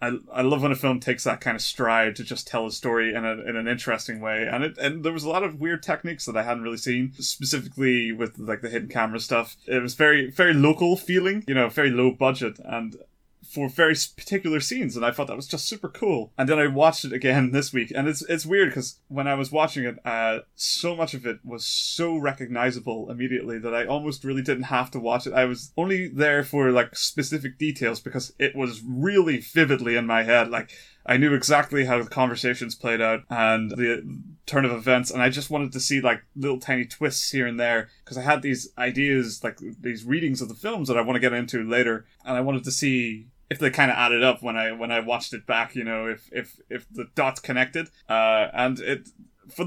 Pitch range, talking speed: 120-145 Hz, 235 wpm